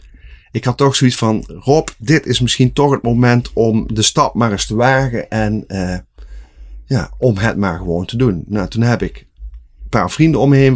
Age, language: 30-49, Dutch